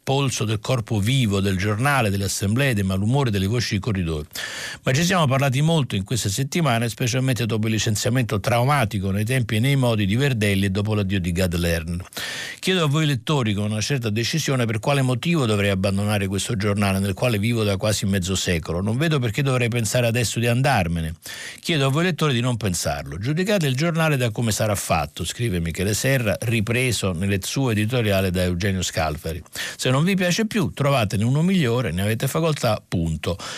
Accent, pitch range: native, 95-130 Hz